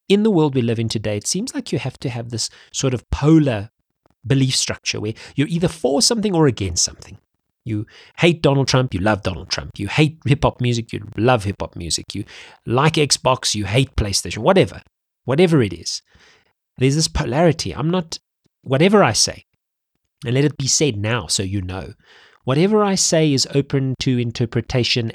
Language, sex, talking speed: English, male, 185 wpm